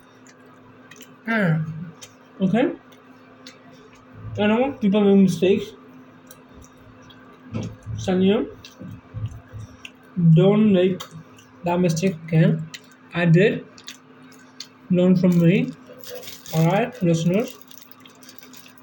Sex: male